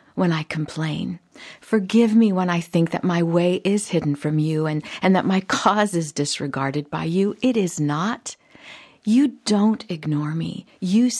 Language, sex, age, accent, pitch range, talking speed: English, female, 50-69, American, 160-225 Hz, 170 wpm